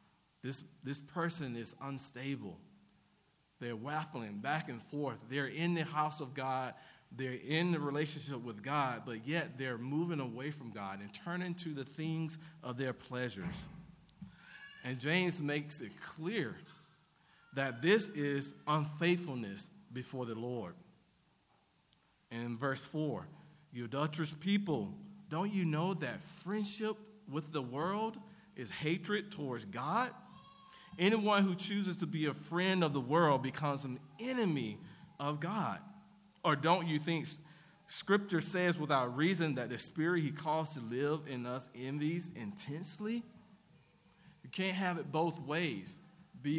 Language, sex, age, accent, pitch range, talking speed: English, male, 40-59, American, 140-180 Hz, 140 wpm